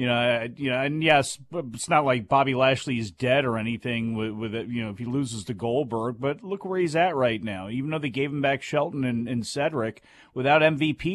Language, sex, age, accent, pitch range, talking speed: English, male, 40-59, American, 130-180 Hz, 230 wpm